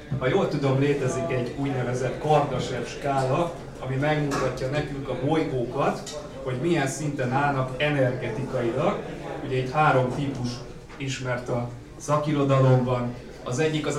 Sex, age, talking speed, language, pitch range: male, 30-49, 120 wpm, Hungarian, 130-145 Hz